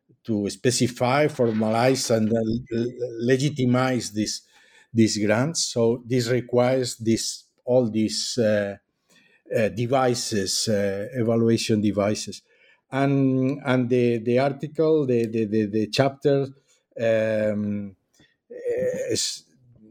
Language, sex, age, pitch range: English, male, 50-69, 105-125 Hz